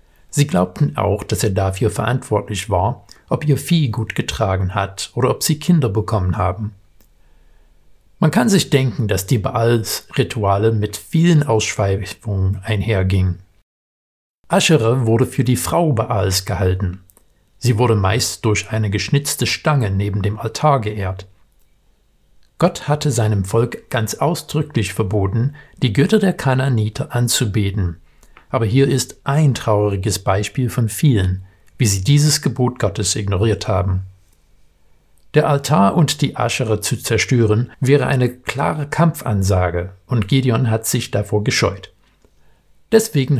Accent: German